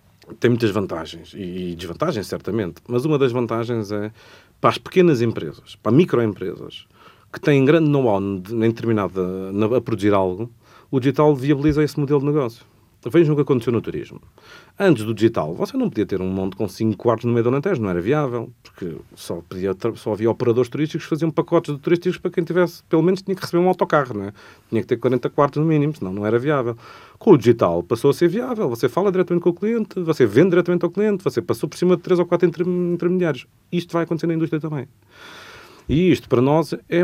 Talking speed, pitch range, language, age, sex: 210 wpm, 105-160 Hz, Portuguese, 40-59, male